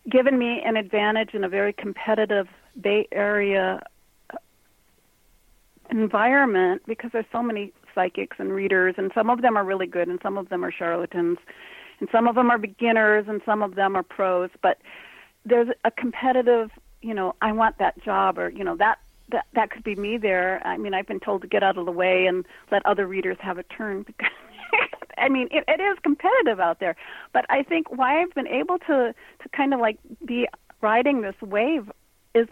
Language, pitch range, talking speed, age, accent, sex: English, 195-240 Hz, 195 wpm, 40-59, American, female